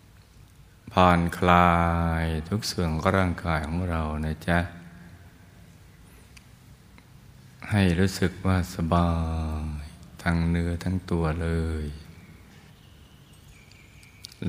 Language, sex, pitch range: Thai, male, 80-90 Hz